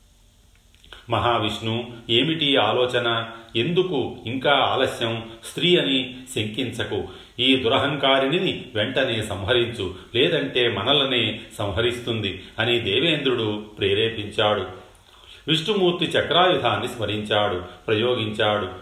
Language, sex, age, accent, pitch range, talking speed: Telugu, male, 40-59, native, 105-135 Hz, 75 wpm